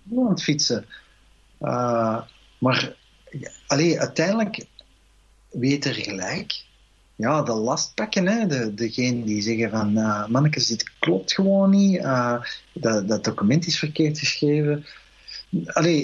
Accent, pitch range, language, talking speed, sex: Dutch, 115-170 Hz, Dutch, 120 wpm, male